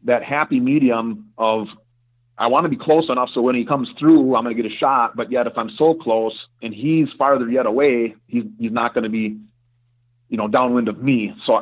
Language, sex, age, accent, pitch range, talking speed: English, male, 30-49, American, 110-130 Hz, 225 wpm